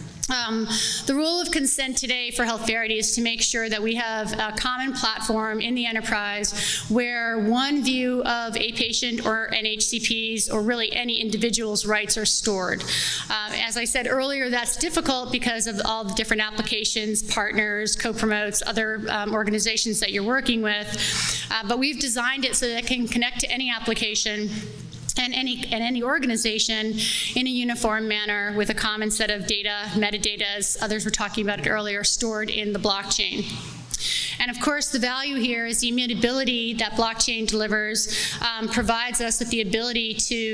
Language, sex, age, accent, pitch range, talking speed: English, female, 30-49, American, 215-240 Hz, 175 wpm